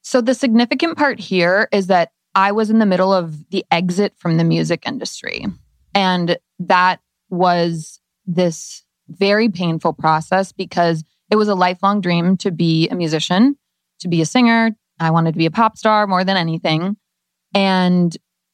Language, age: English, 20-39